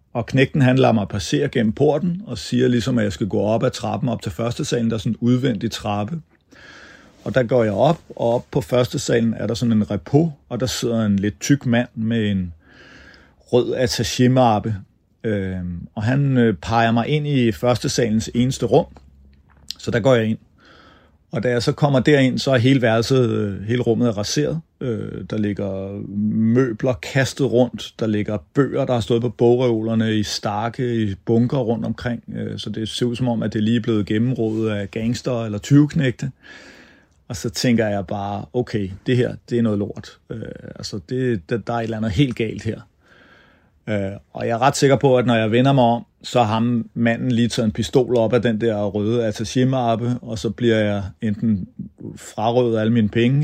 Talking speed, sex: 195 wpm, male